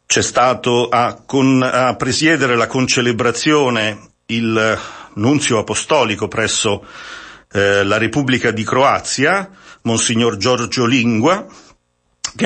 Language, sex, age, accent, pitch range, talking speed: Italian, male, 50-69, native, 110-130 Hz, 100 wpm